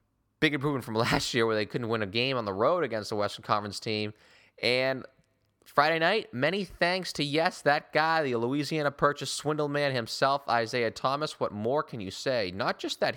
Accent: American